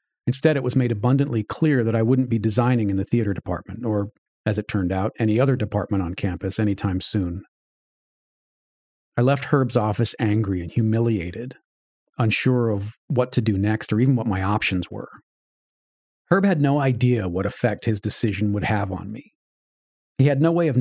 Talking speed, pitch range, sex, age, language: 180 wpm, 105-130 Hz, male, 40-59, English